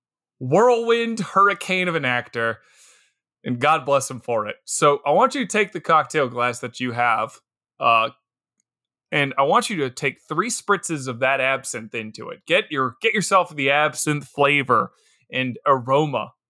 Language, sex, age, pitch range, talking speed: English, male, 20-39, 135-200 Hz, 165 wpm